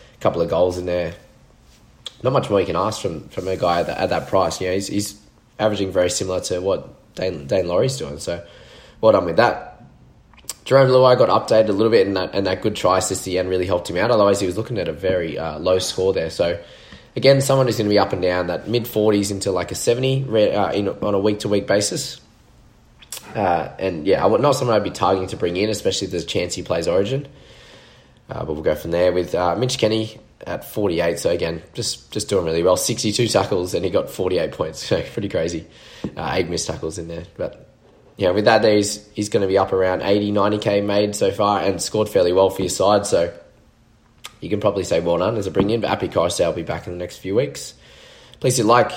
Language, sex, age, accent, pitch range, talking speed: English, male, 20-39, Australian, 90-110 Hz, 245 wpm